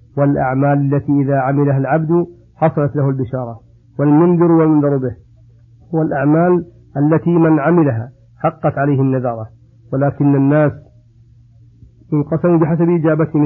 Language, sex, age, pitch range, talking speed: Arabic, male, 50-69, 130-155 Hz, 105 wpm